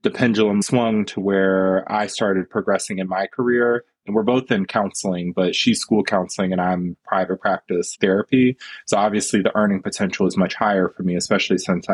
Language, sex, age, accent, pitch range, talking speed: English, male, 20-39, American, 95-120 Hz, 185 wpm